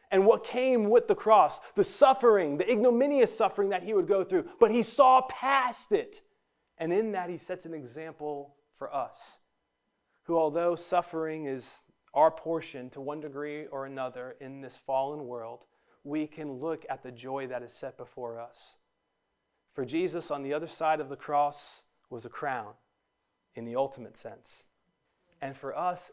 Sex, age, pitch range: male, 30-49, 130-175 Hz